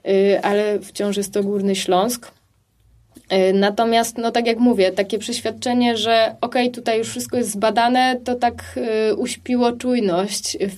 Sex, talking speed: female, 145 wpm